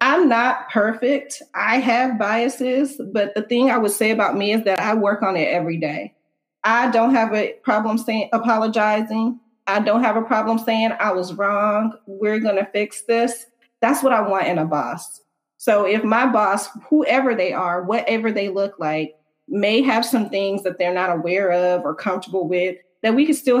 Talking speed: 195 wpm